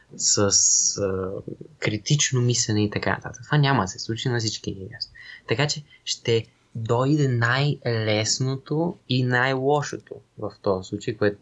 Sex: male